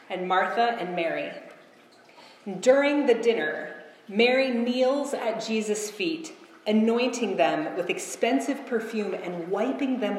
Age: 30-49